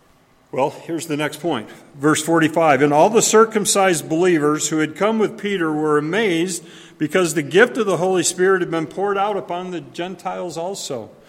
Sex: male